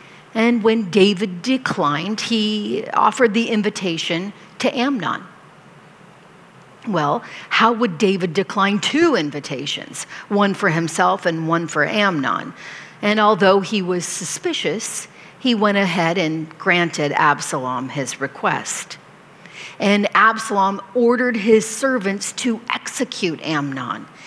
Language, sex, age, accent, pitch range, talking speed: English, female, 50-69, American, 175-225 Hz, 110 wpm